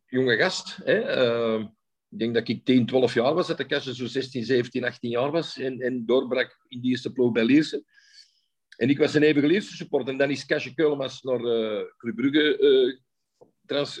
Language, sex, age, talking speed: Dutch, male, 50-69, 200 wpm